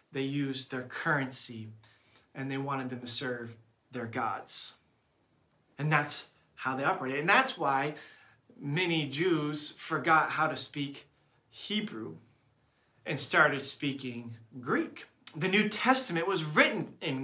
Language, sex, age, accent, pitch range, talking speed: English, male, 30-49, American, 135-175 Hz, 130 wpm